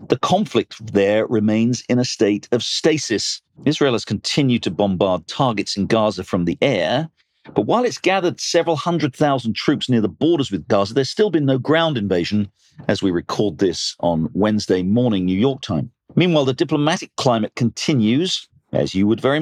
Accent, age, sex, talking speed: British, 50-69, male, 180 wpm